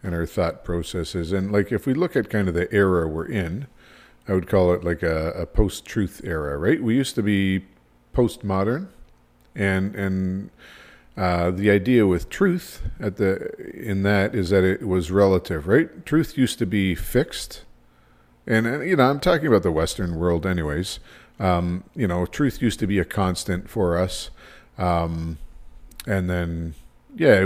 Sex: male